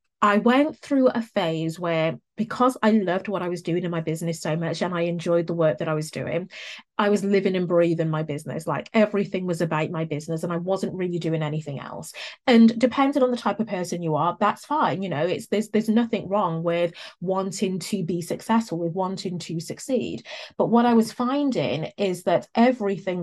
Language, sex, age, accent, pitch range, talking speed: English, female, 30-49, British, 170-215 Hz, 210 wpm